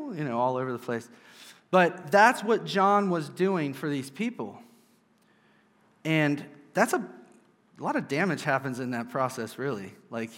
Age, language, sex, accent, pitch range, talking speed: 30-49, English, male, American, 130-170 Hz, 160 wpm